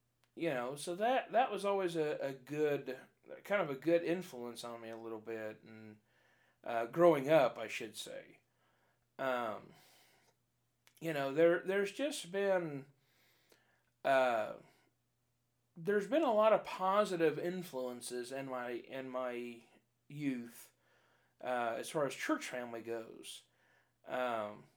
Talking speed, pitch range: 135 wpm, 125-175 Hz